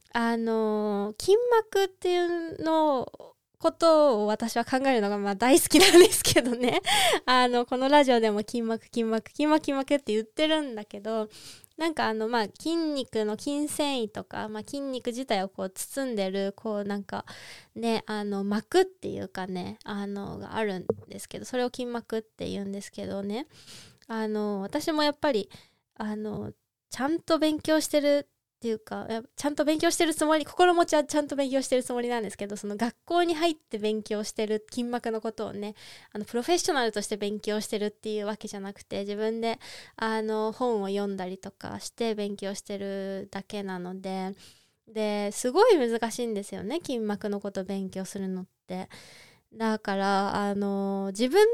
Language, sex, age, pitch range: Japanese, female, 20-39, 205-285 Hz